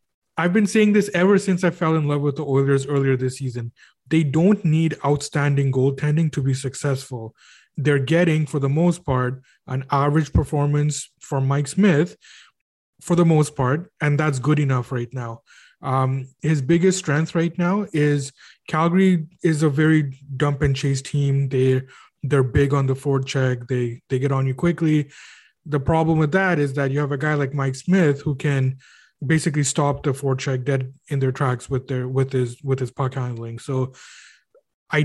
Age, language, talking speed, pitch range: 20-39, English, 180 wpm, 130-155 Hz